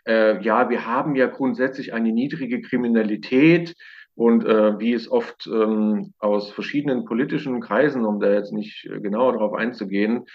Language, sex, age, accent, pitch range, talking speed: German, male, 40-59, German, 110-135 Hz, 150 wpm